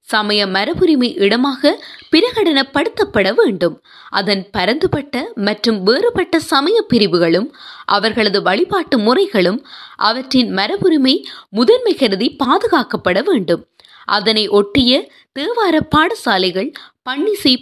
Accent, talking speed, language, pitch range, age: native, 80 wpm, Tamil, 215-340 Hz, 20-39